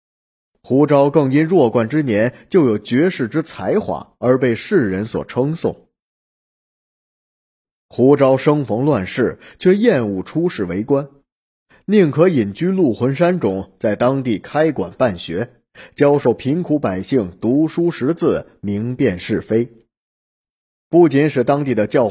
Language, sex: Chinese, male